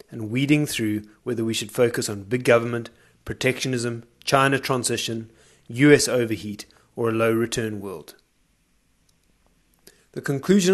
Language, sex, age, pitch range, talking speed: English, male, 30-49, 110-140 Hz, 115 wpm